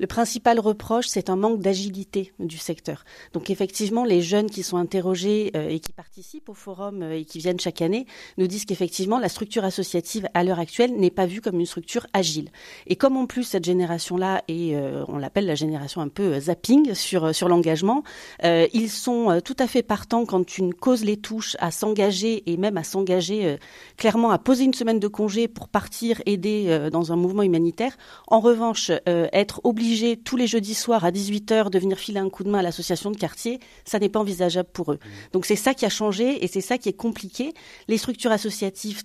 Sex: female